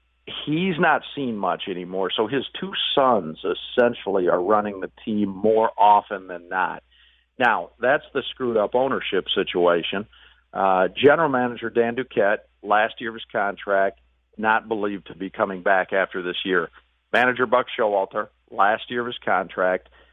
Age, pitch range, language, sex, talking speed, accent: 50-69, 95-120 Hz, English, male, 150 wpm, American